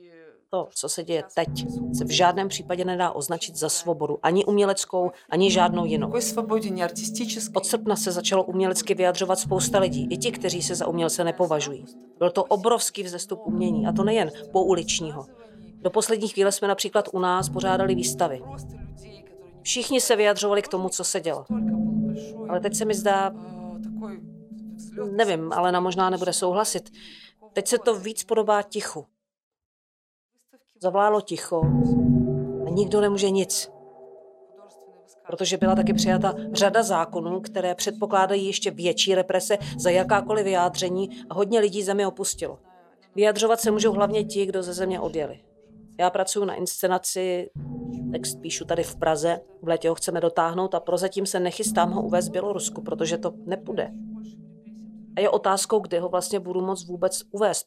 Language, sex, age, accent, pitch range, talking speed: Czech, female, 40-59, native, 175-210 Hz, 150 wpm